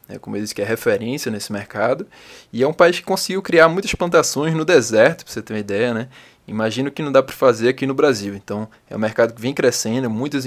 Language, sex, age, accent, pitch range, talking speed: Portuguese, male, 20-39, Brazilian, 110-140 Hz, 240 wpm